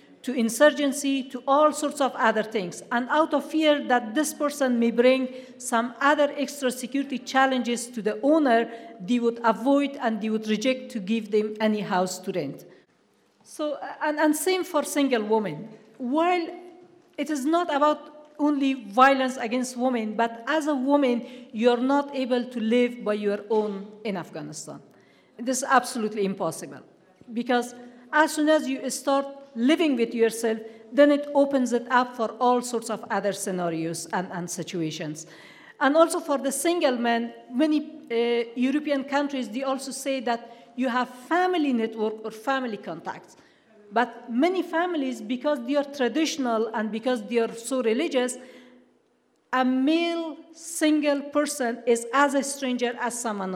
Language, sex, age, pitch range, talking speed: German, female, 50-69, 230-285 Hz, 160 wpm